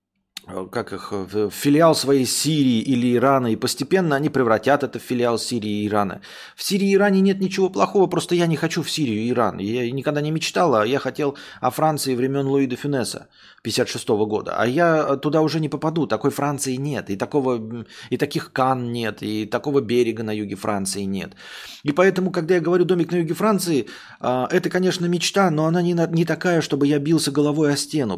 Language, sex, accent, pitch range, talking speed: Russian, male, native, 120-160 Hz, 195 wpm